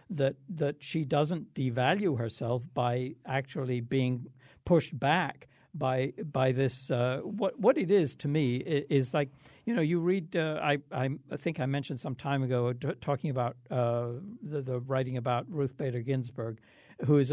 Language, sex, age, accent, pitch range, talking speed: English, male, 60-79, American, 125-155 Hz, 175 wpm